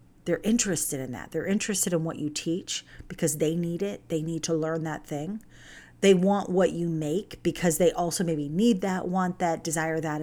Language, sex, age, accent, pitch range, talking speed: English, female, 40-59, American, 160-200 Hz, 205 wpm